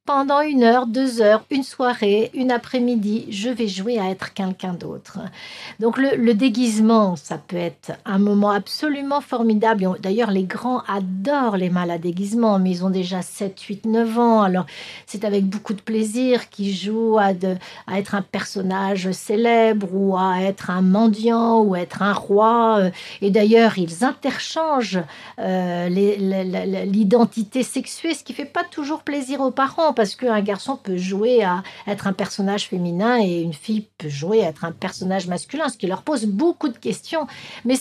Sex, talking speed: female, 185 wpm